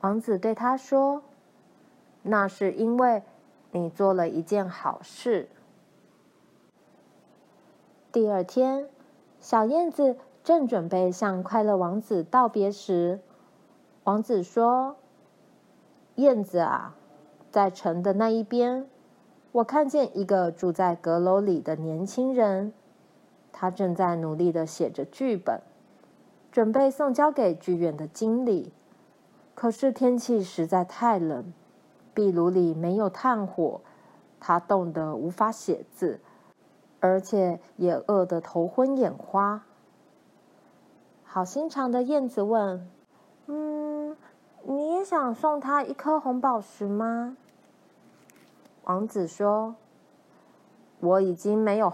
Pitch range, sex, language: 180-250 Hz, female, Chinese